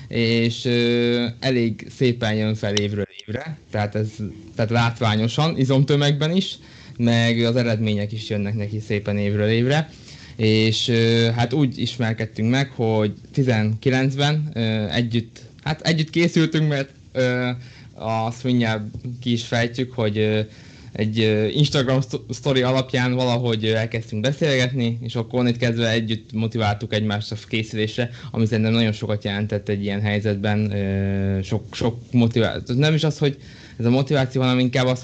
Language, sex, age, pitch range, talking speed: Hungarian, male, 20-39, 105-125 Hz, 140 wpm